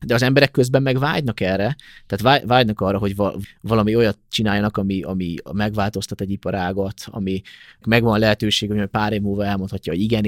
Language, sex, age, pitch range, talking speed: Hungarian, male, 20-39, 100-115 Hz, 170 wpm